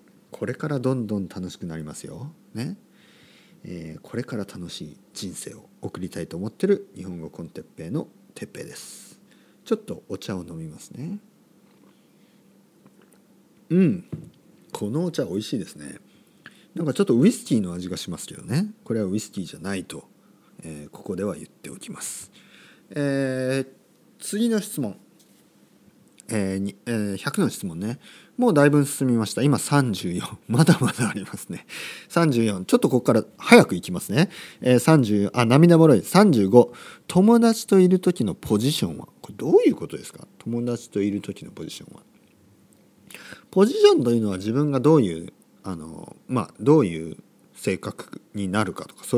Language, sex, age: Japanese, male, 40-59